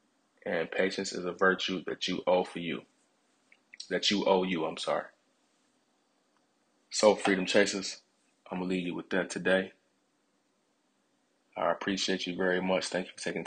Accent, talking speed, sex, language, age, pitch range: American, 160 wpm, male, English, 20-39, 95-110 Hz